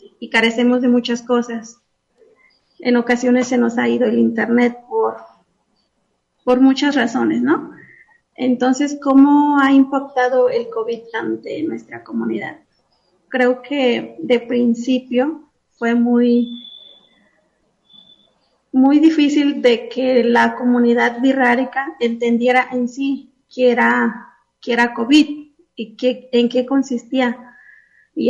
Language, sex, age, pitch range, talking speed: Spanish, female, 30-49, 235-270 Hz, 115 wpm